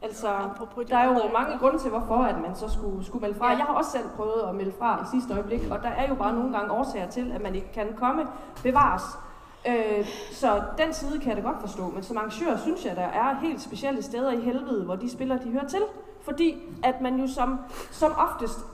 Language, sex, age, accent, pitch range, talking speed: Danish, female, 30-49, native, 205-255 Hz, 240 wpm